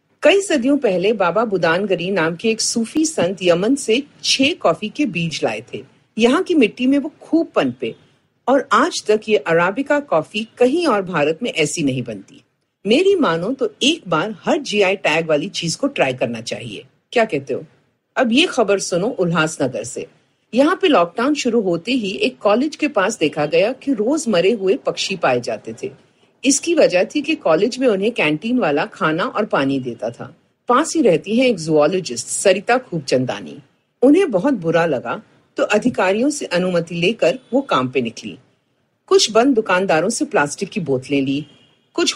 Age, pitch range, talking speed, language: 50-69, 165-275 Hz, 180 wpm, Hindi